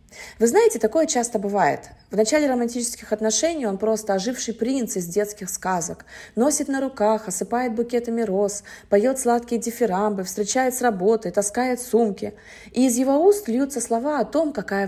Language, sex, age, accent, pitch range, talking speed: Russian, female, 30-49, native, 195-255 Hz, 155 wpm